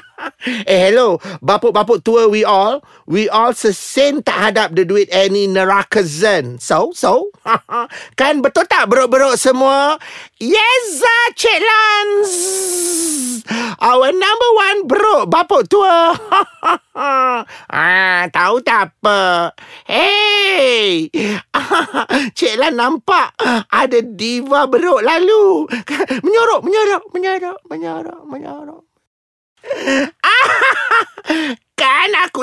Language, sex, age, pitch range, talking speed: Malay, male, 30-49, 225-330 Hz, 100 wpm